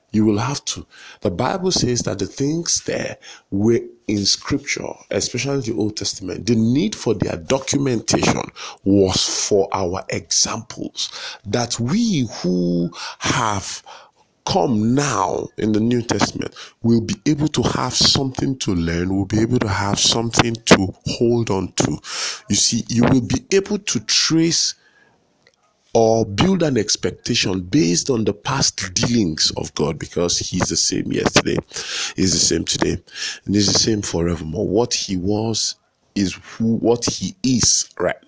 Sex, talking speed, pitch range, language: male, 155 wpm, 95-130 Hz, English